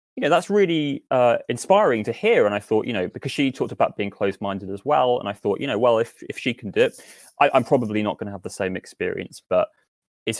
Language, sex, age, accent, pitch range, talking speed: English, male, 20-39, British, 100-135 Hz, 265 wpm